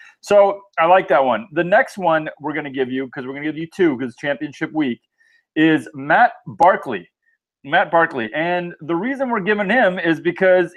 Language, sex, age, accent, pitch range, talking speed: English, male, 30-49, American, 140-190 Hz, 200 wpm